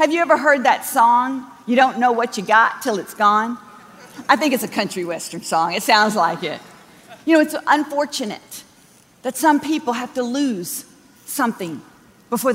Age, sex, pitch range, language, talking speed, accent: 50-69, female, 215-300 Hz, English, 180 wpm, American